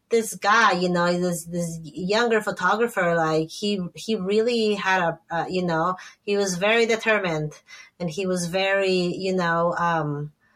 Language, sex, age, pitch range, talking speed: English, female, 20-39, 180-230 Hz, 160 wpm